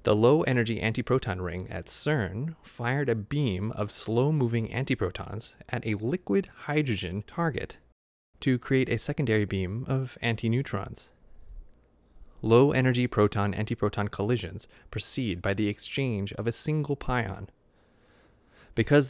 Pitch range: 100-135 Hz